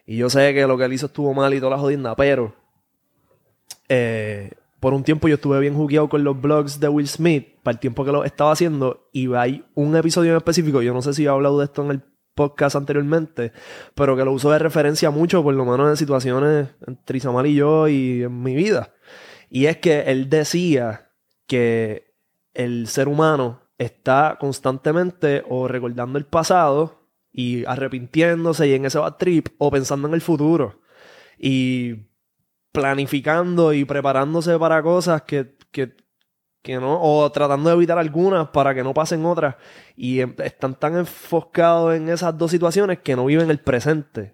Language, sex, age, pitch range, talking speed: Spanish, male, 20-39, 130-155 Hz, 180 wpm